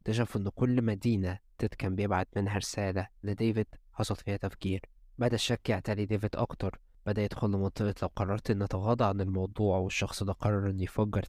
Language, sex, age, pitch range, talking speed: Arabic, male, 20-39, 100-115 Hz, 170 wpm